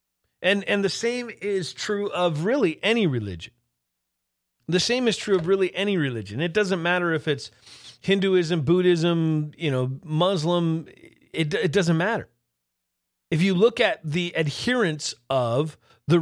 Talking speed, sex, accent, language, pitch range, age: 150 wpm, male, American, English, 110-180 Hz, 40-59